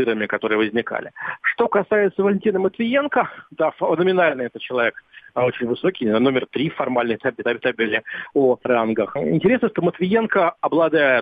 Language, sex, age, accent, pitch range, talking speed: Russian, male, 40-59, native, 125-155 Hz, 125 wpm